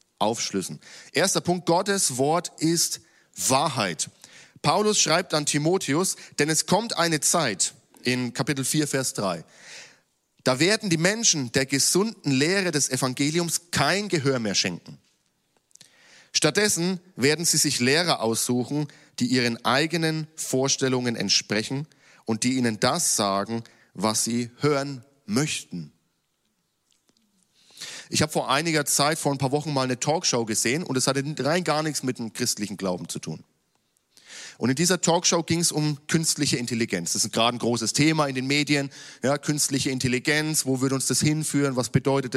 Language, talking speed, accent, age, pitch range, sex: German, 150 wpm, German, 40-59, 125-165 Hz, male